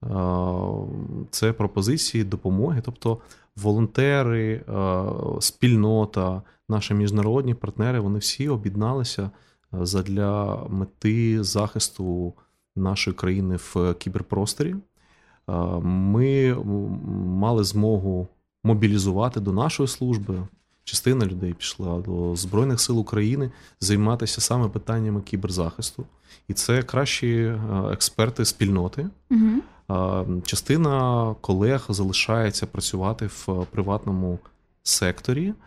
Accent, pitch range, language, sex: native, 95-115 Hz, Ukrainian, male